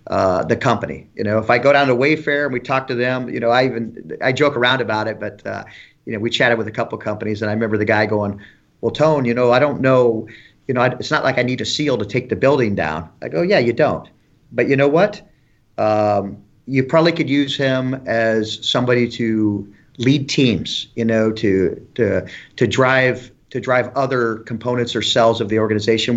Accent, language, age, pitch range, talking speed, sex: American, English, 40-59, 110-130 Hz, 225 wpm, male